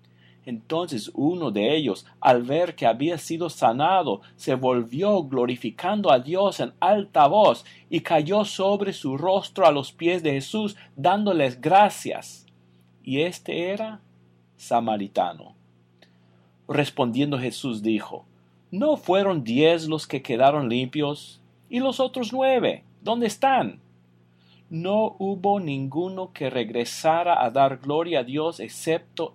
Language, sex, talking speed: Spanish, male, 125 wpm